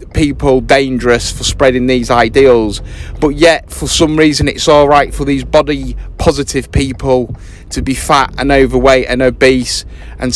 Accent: British